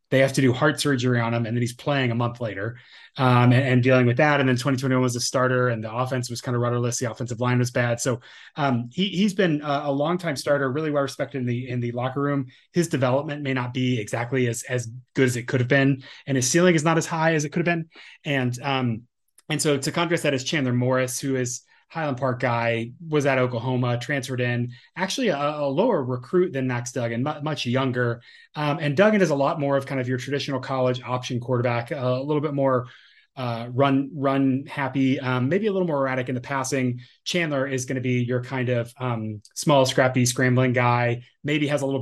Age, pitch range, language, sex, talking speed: 30-49, 125-145 Hz, English, male, 235 wpm